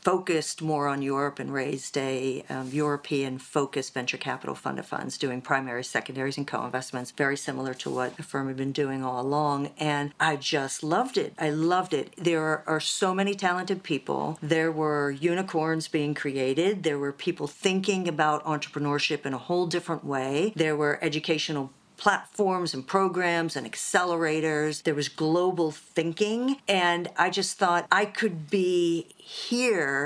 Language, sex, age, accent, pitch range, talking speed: English, female, 50-69, American, 145-190 Hz, 160 wpm